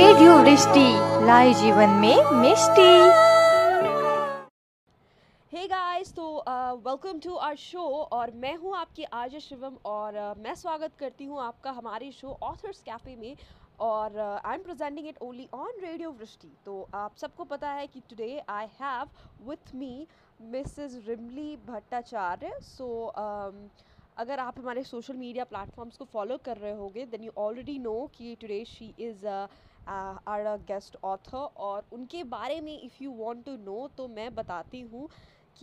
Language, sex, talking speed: English, female, 155 wpm